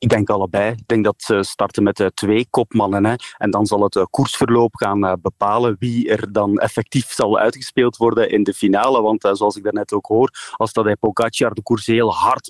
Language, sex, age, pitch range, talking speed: Dutch, male, 30-49, 115-140 Hz, 195 wpm